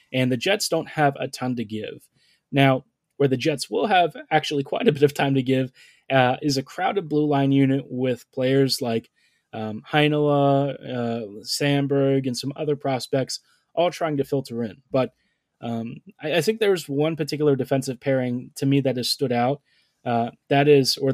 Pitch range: 125-145 Hz